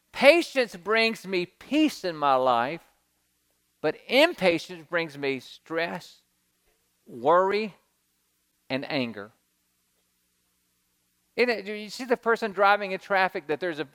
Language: English